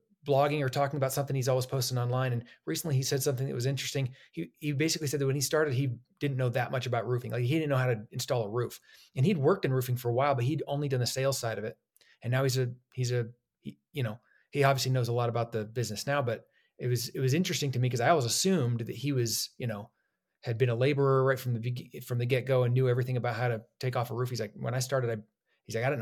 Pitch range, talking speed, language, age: 120-135 Hz, 285 wpm, English, 30-49